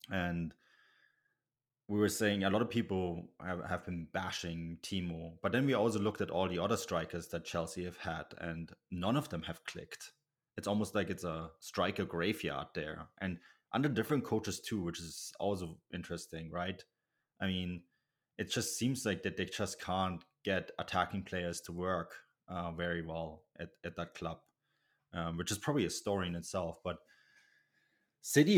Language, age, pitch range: English, 20-39, 85-100 Hz